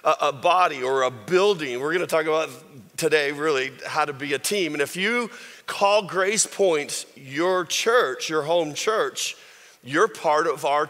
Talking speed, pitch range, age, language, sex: 170 wpm, 140-210 Hz, 40-59, English, male